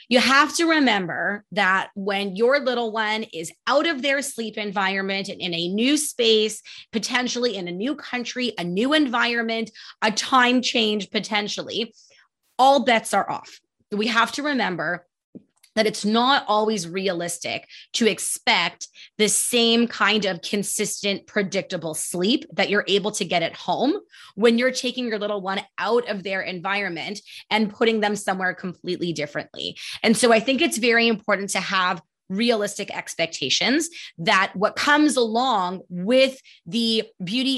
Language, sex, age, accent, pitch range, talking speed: English, female, 20-39, American, 195-250 Hz, 150 wpm